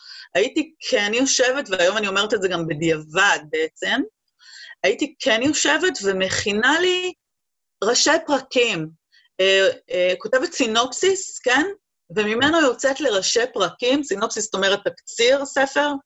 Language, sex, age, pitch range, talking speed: Hebrew, female, 30-49, 175-265 Hz, 120 wpm